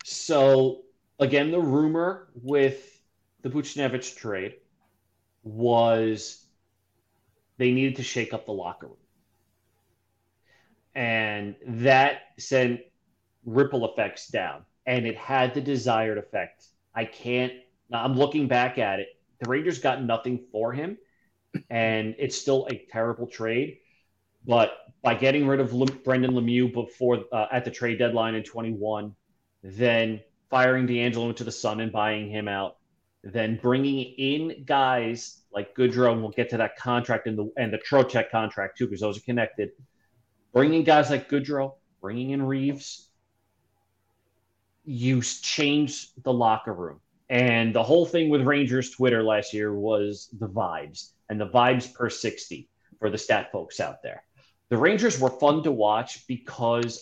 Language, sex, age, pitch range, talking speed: English, male, 30-49, 110-135 Hz, 145 wpm